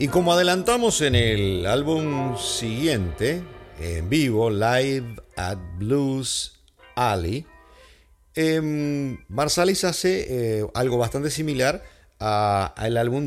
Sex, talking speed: male, 105 wpm